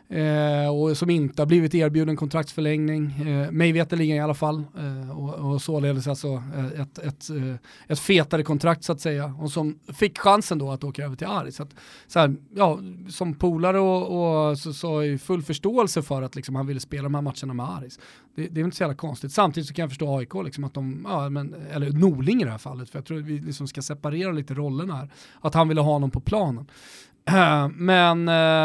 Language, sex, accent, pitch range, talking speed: Swedish, male, native, 140-160 Hz, 220 wpm